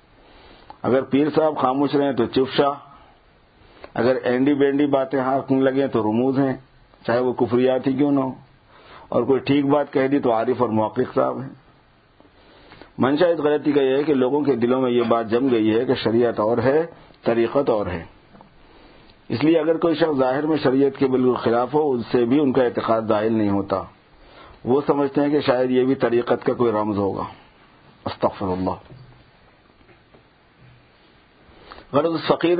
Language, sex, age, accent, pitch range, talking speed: English, male, 50-69, Indian, 115-140 Hz, 165 wpm